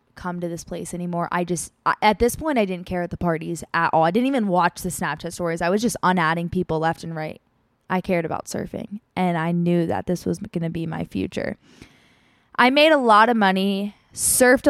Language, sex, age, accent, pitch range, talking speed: English, female, 20-39, American, 180-230 Hz, 225 wpm